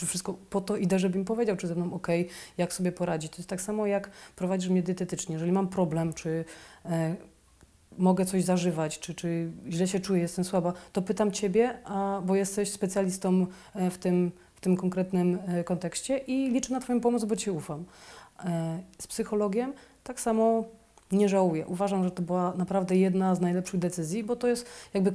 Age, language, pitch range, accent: 30-49, Polish, 180-205 Hz, native